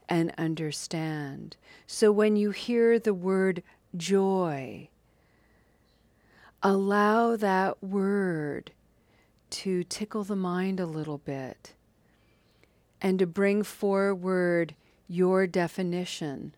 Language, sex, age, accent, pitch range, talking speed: English, female, 40-59, American, 160-200 Hz, 90 wpm